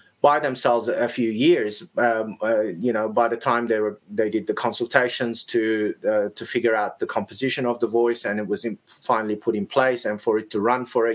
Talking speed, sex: 230 wpm, male